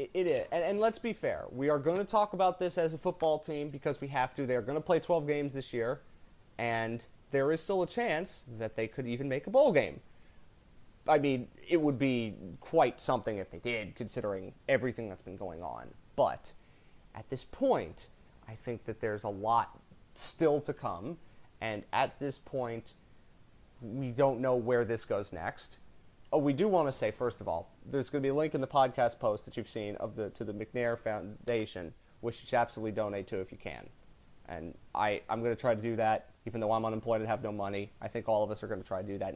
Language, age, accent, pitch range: English, 30-49, American, 110-140 Hz